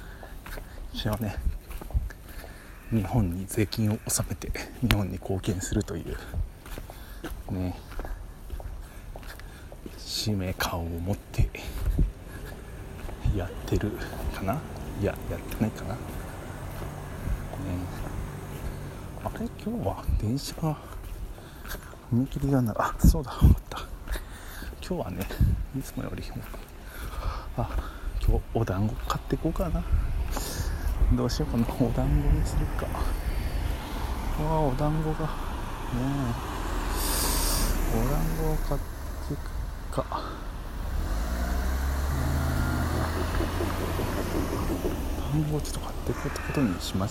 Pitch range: 75-105 Hz